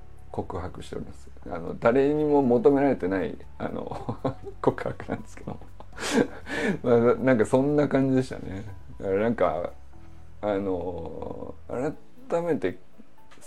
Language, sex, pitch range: Japanese, male, 105-160 Hz